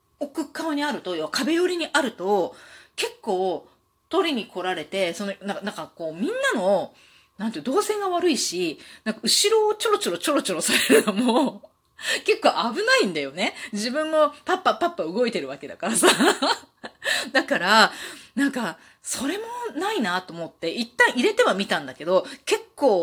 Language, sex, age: Japanese, female, 30-49